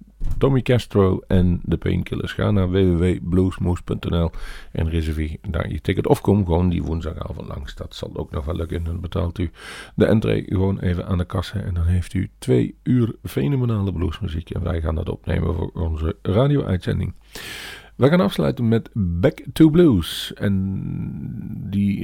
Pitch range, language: 90-105 Hz, Dutch